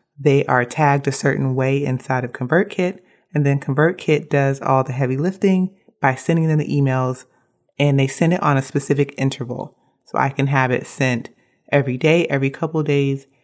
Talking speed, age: 190 wpm, 30-49